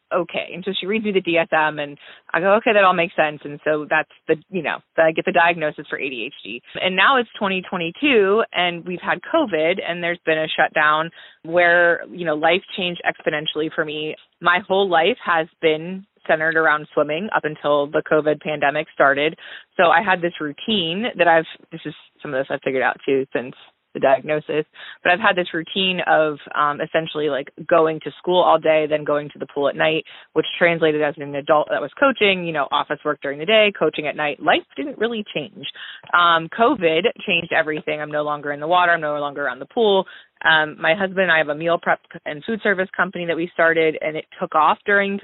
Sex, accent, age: female, American, 20-39